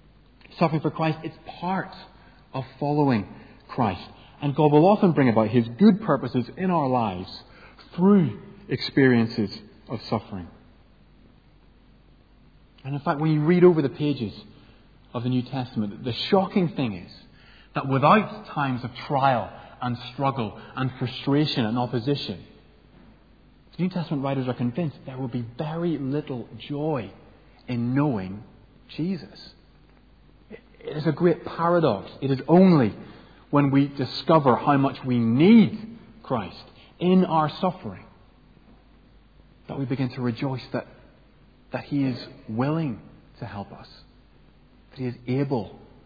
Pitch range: 115-150 Hz